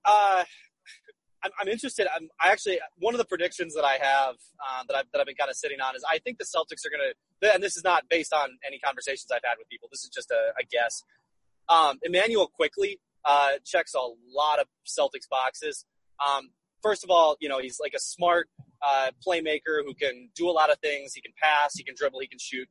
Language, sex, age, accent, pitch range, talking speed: English, male, 20-39, American, 145-215 Hz, 235 wpm